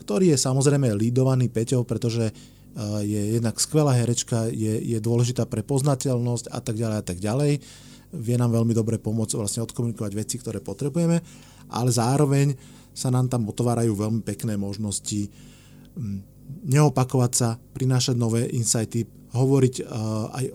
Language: English